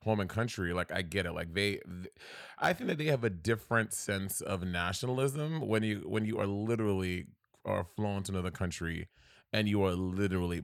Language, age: English, 30-49